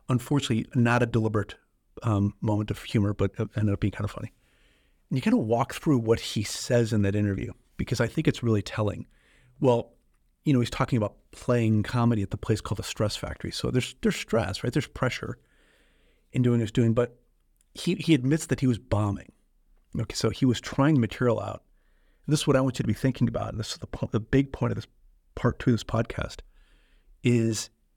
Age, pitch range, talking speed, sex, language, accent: 40-59, 105-125 Hz, 220 wpm, male, English, American